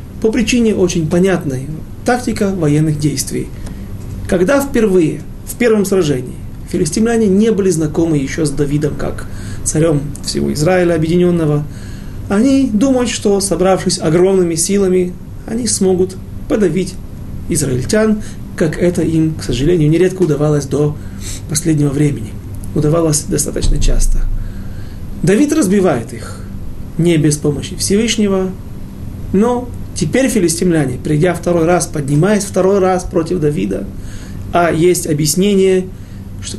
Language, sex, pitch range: Russian, male, 140-200 Hz